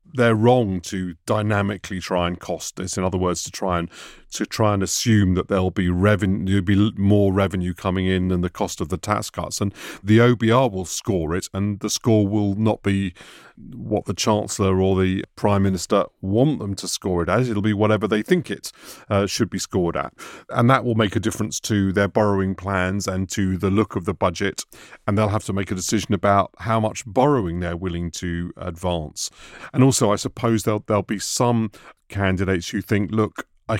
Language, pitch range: English, 95-110 Hz